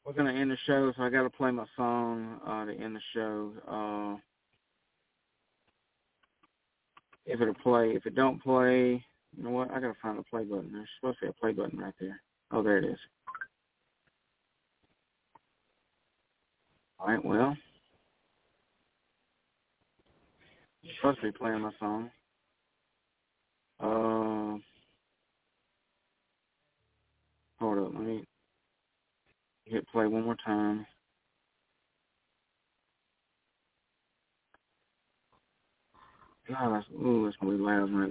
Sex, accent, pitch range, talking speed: male, American, 110-130 Hz, 110 wpm